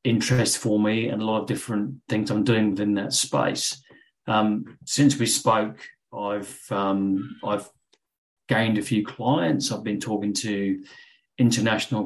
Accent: British